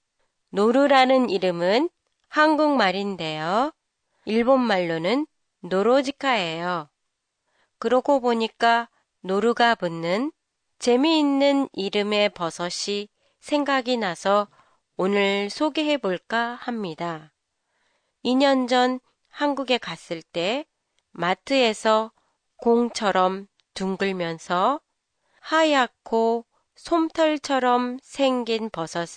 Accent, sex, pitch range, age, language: Korean, female, 190-270 Hz, 30-49, Japanese